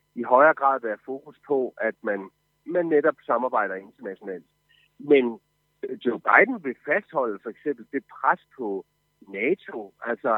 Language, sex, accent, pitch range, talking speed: Danish, male, native, 125-180 Hz, 140 wpm